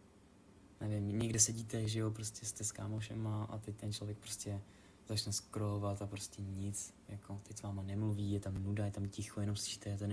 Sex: male